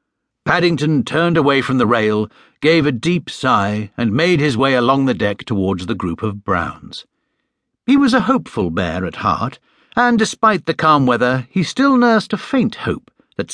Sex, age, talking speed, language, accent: male, 60-79, 180 wpm, English, British